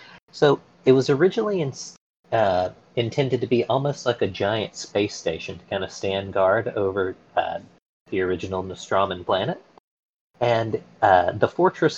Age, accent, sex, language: 40-59, American, male, English